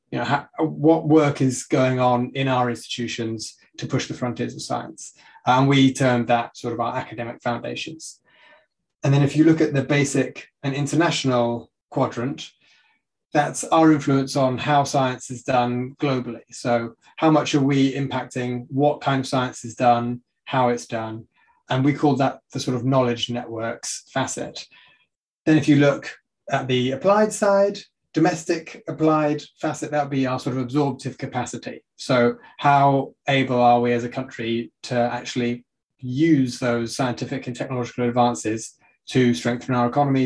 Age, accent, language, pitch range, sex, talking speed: 30-49, British, English, 120-145 Hz, male, 160 wpm